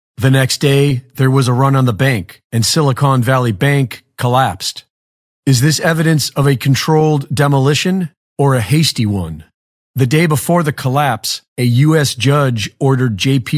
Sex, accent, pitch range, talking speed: male, American, 125-150 Hz, 160 wpm